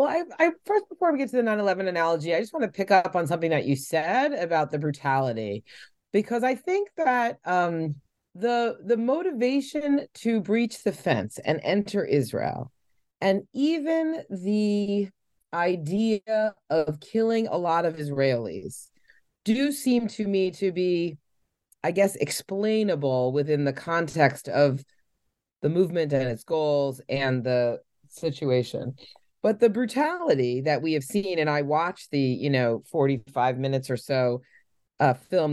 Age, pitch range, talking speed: 30-49, 135-205 Hz, 155 wpm